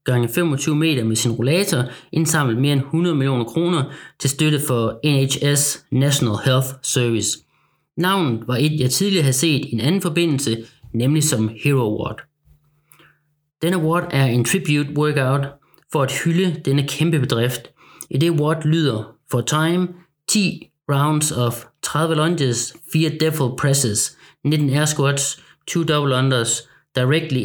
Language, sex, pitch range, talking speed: Danish, male, 125-155 Hz, 145 wpm